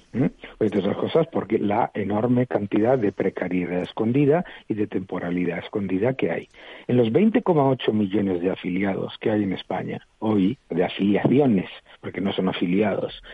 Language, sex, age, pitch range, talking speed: Spanish, male, 60-79, 95-135 Hz, 155 wpm